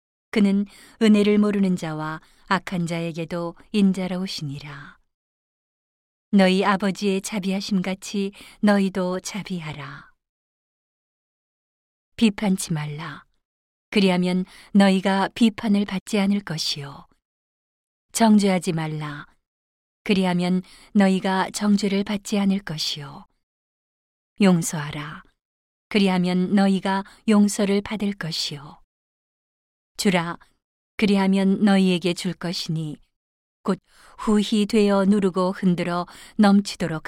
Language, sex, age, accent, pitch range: Korean, female, 40-59, native, 170-205 Hz